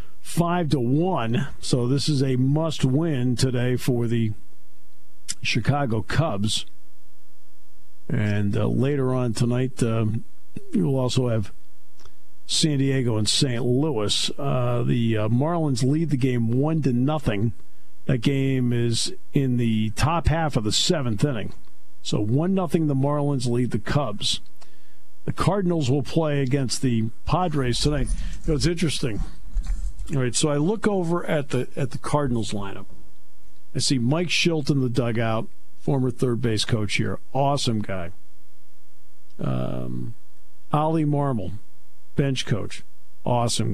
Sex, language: male, English